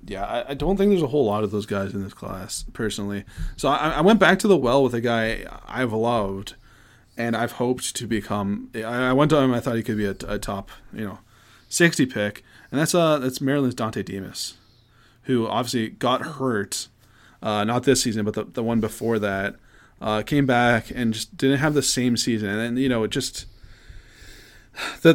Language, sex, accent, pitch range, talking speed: English, male, American, 105-135 Hz, 210 wpm